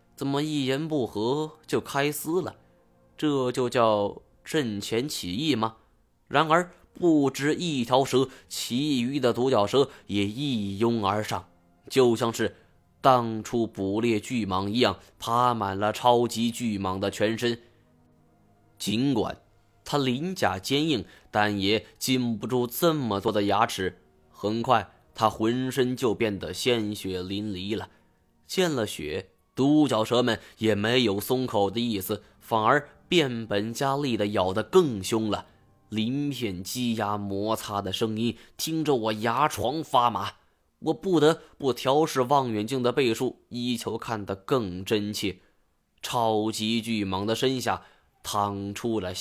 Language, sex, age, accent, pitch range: Chinese, male, 20-39, native, 100-130 Hz